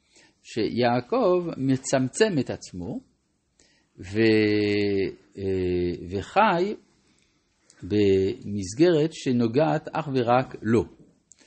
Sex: male